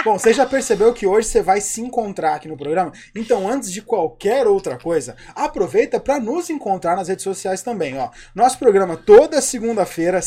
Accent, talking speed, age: Brazilian, 185 wpm, 20-39